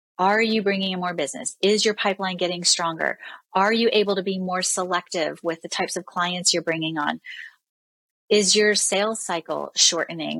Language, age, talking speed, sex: English, 30-49, 180 wpm, female